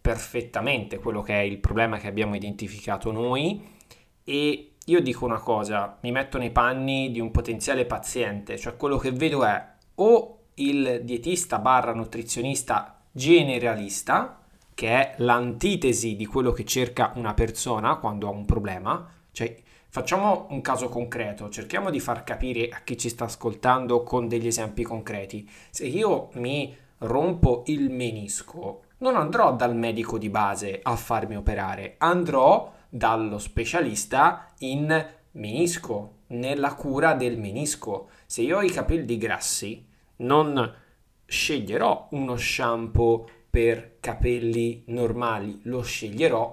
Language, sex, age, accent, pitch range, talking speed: Italian, male, 20-39, native, 110-135 Hz, 135 wpm